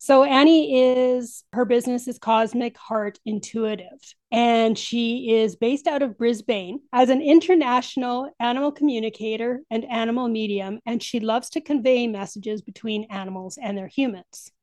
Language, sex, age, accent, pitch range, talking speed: English, female, 30-49, American, 205-250 Hz, 145 wpm